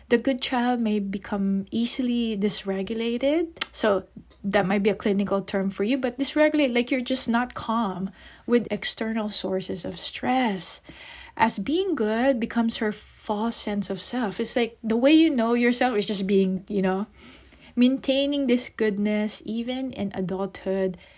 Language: English